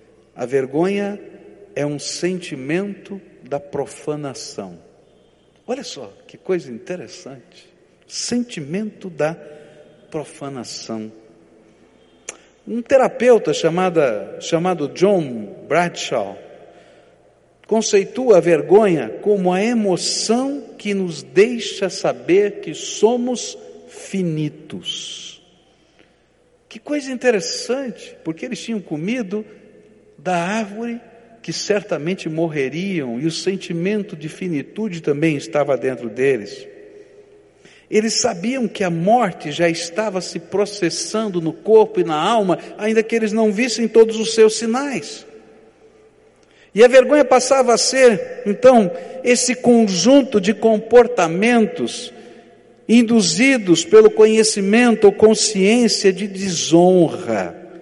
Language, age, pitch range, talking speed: Portuguese, 60-79, 170-235 Hz, 100 wpm